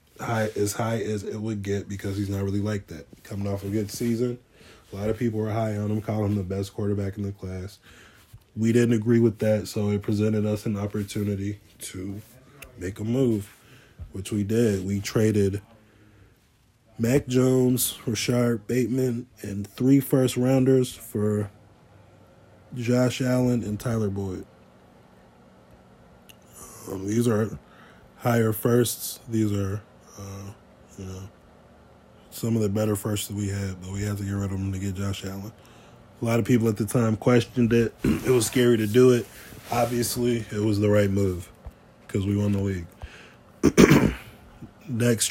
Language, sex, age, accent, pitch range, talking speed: English, male, 20-39, American, 100-120 Hz, 165 wpm